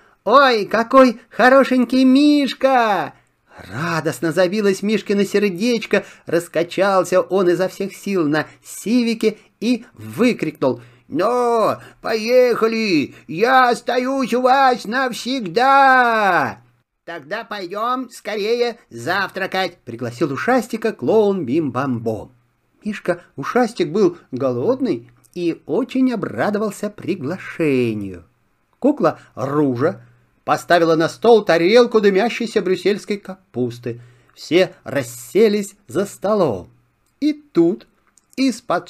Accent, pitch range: native, 175-260 Hz